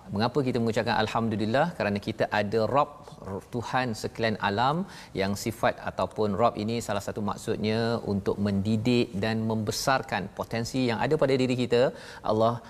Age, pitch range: 40-59, 110-130 Hz